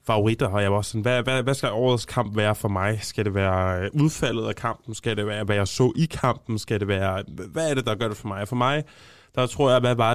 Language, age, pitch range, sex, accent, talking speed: Danish, 20-39, 105-125 Hz, male, native, 265 wpm